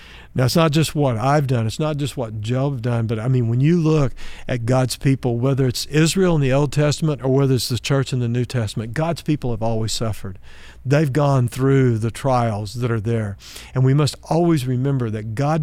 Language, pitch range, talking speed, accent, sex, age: English, 120-145 Hz, 225 wpm, American, male, 50-69